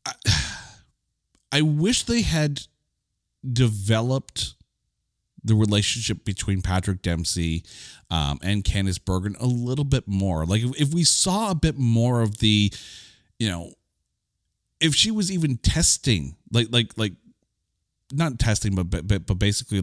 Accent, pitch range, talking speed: American, 95-125 Hz, 135 wpm